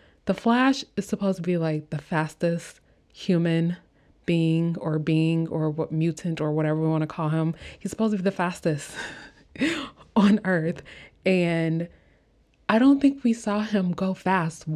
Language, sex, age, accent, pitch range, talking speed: English, female, 20-39, American, 160-200 Hz, 165 wpm